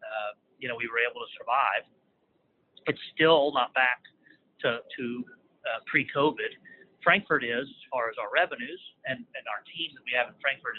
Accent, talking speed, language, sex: American, 180 wpm, English, male